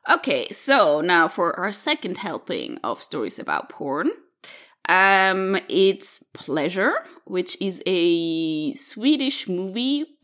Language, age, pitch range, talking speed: English, 20-39, 170-275 Hz, 110 wpm